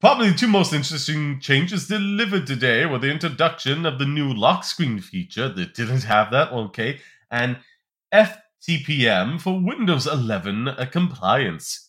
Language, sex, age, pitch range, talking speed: English, male, 30-49, 125-170 Hz, 140 wpm